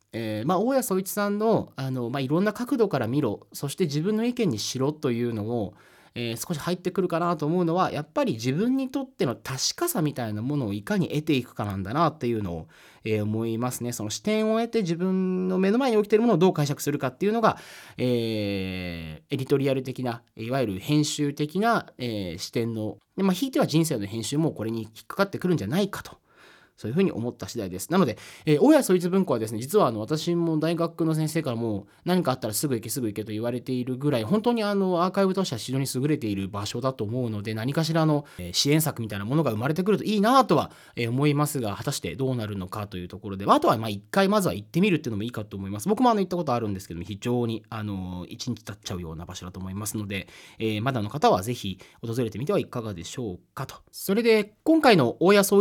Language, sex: Japanese, male